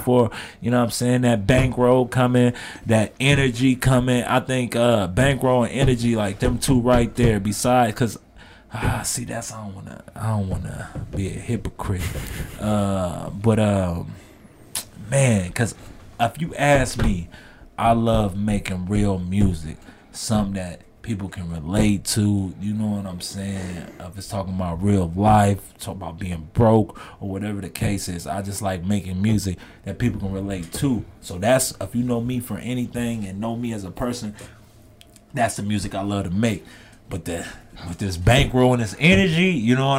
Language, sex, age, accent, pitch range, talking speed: English, male, 30-49, American, 100-130 Hz, 180 wpm